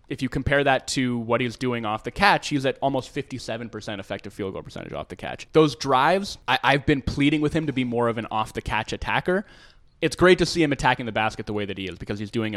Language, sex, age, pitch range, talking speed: English, male, 20-39, 110-140 Hz, 250 wpm